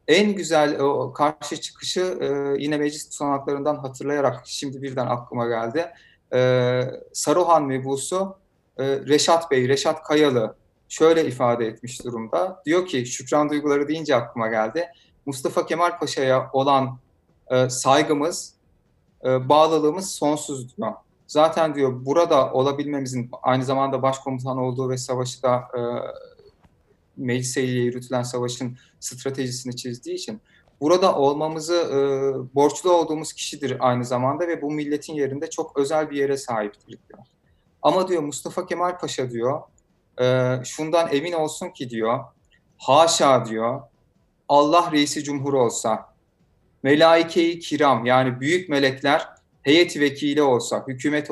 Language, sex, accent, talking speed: Turkish, male, native, 125 wpm